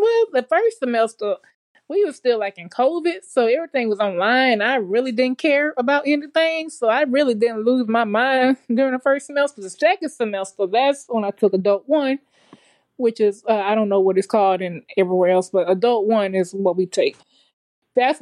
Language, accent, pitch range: English, American, 205-265 Hz